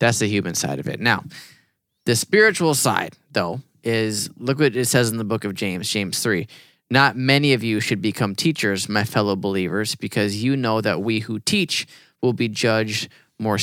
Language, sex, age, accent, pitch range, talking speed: English, male, 20-39, American, 100-120 Hz, 195 wpm